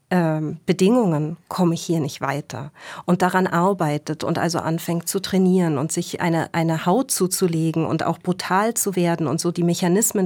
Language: German